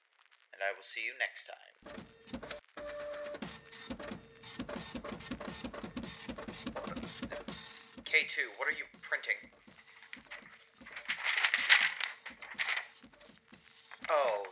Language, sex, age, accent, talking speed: English, male, 30-49, American, 55 wpm